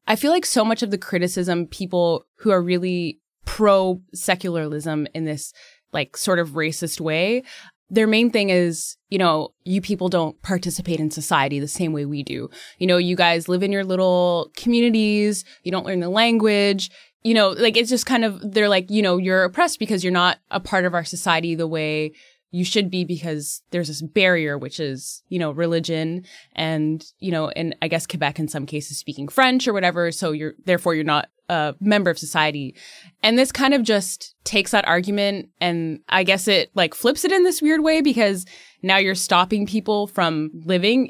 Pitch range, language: 165-205 Hz, English